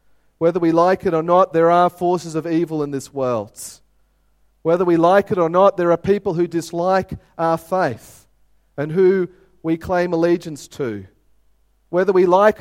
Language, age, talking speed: English, 40-59, 170 wpm